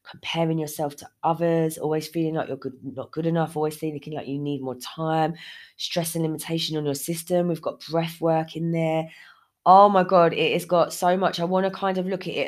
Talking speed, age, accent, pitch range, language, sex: 225 wpm, 20-39, British, 145-185 Hz, English, female